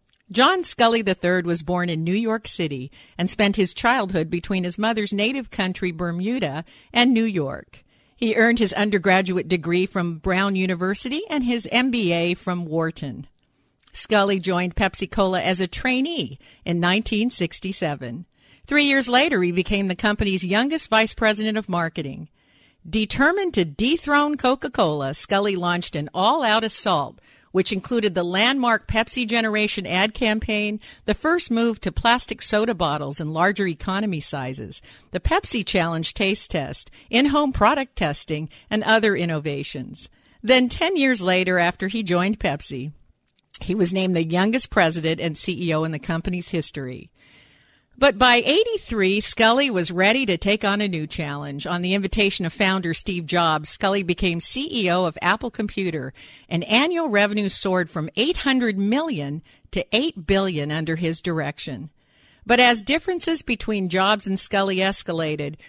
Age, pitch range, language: 50-69, 170-225 Hz, English